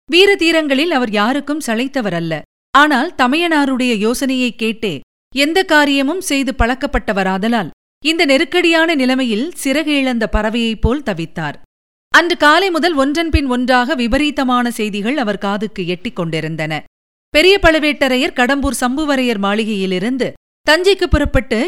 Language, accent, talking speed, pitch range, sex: Tamil, native, 100 wpm, 215-295 Hz, female